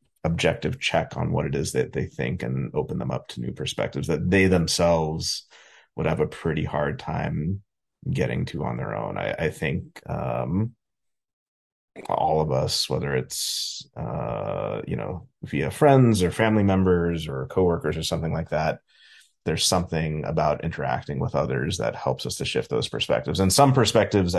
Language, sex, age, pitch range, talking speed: English, male, 30-49, 80-110 Hz, 170 wpm